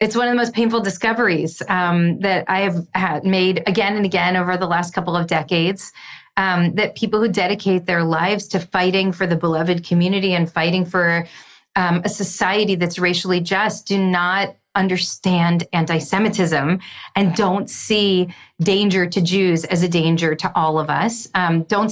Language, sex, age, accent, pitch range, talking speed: English, female, 30-49, American, 180-225 Hz, 170 wpm